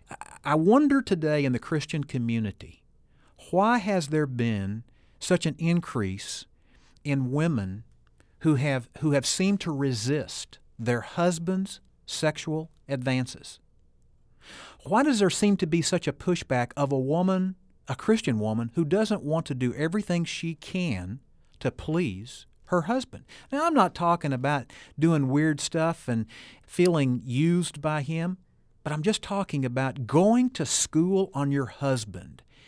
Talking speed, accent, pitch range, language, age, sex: 140 wpm, American, 130-180 Hz, English, 50-69, male